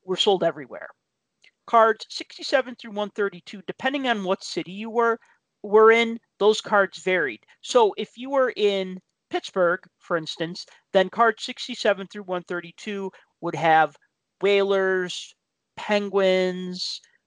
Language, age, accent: English, 40-59, American